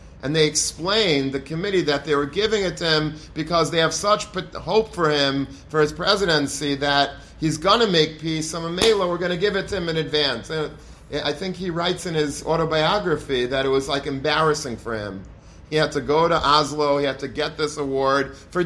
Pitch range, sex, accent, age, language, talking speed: 140-170 Hz, male, American, 40-59, English, 215 wpm